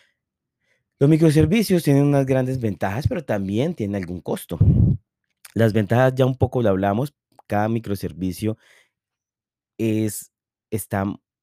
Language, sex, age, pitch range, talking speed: Spanish, male, 30-49, 90-110 Hz, 110 wpm